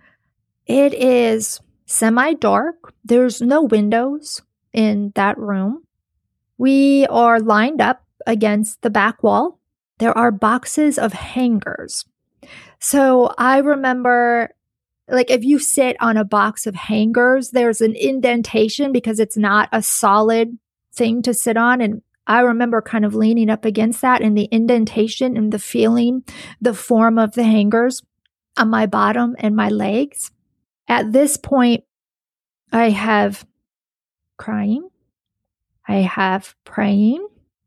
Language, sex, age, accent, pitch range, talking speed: English, female, 40-59, American, 210-250 Hz, 130 wpm